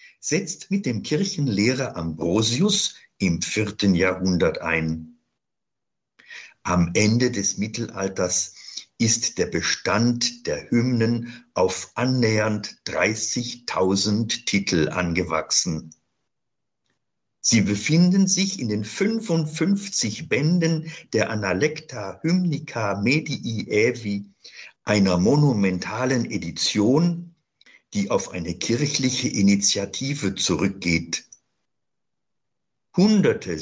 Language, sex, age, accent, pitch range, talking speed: German, male, 50-69, German, 95-135 Hz, 80 wpm